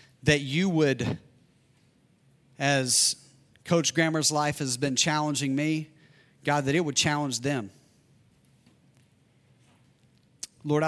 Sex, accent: male, American